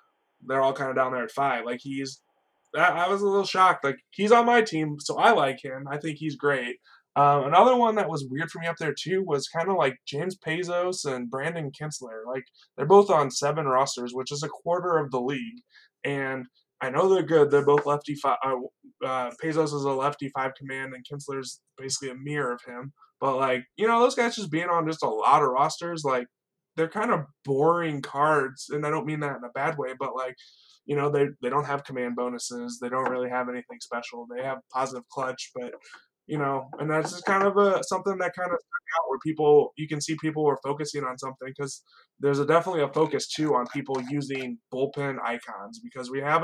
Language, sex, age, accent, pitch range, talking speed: English, male, 20-39, American, 130-160 Hz, 225 wpm